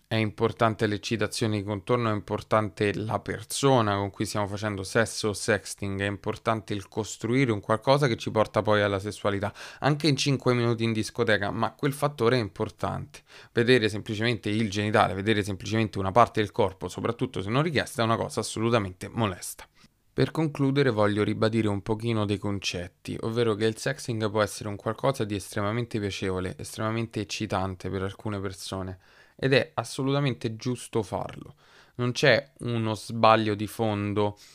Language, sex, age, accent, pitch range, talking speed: Italian, male, 20-39, native, 100-120 Hz, 160 wpm